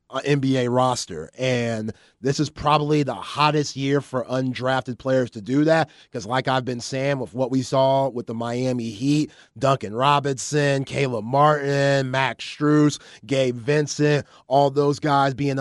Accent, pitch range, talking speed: American, 120-140 Hz, 155 wpm